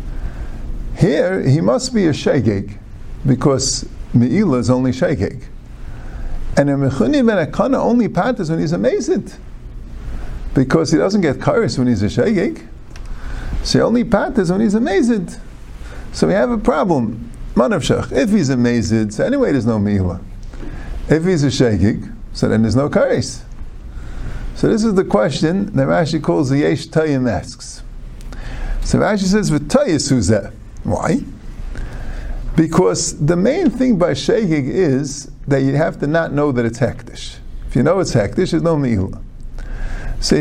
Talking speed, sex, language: 155 wpm, male, English